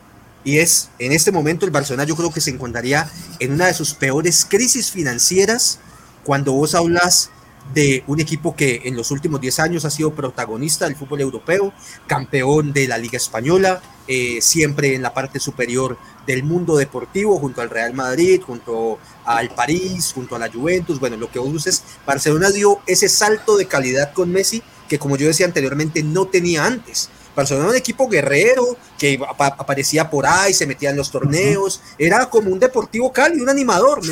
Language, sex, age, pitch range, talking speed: Spanish, male, 30-49, 140-185 Hz, 190 wpm